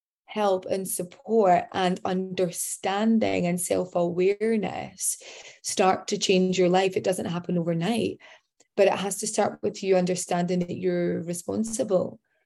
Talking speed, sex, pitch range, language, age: 130 wpm, female, 180-215 Hz, English, 20-39